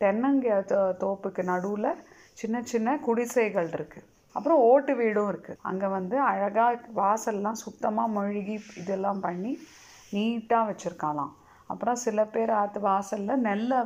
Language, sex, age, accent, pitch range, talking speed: Tamil, female, 30-49, native, 185-230 Hz, 120 wpm